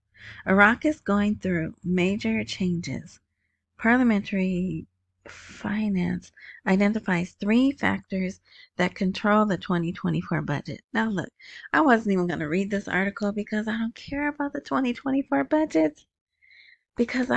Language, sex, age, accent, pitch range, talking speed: English, female, 30-49, American, 180-240 Hz, 120 wpm